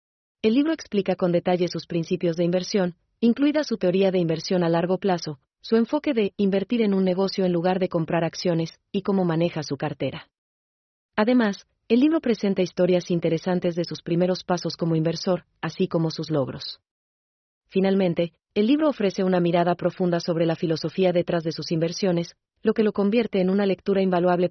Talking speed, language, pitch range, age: 175 wpm, German, 165-195 Hz, 30-49